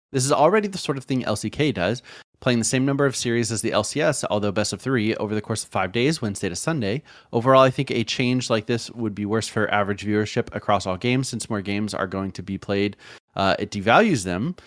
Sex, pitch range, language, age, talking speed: male, 100-130 Hz, English, 30-49, 240 wpm